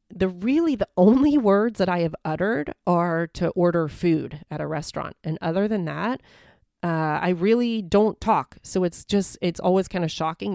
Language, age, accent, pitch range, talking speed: English, 30-49, American, 150-185 Hz, 190 wpm